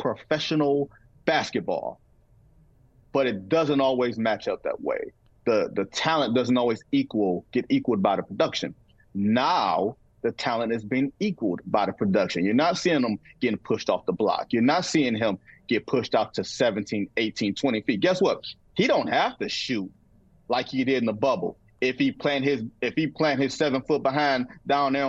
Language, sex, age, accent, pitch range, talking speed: English, male, 30-49, American, 135-215 Hz, 185 wpm